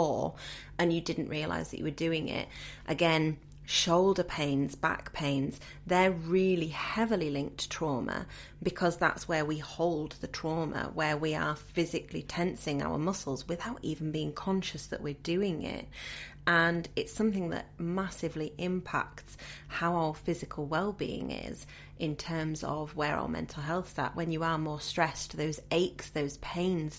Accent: British